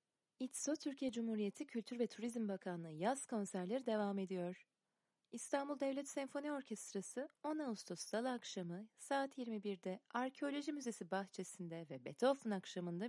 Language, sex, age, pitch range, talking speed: Turkish, female, 30-49, 185-230 Hz, 125 wpm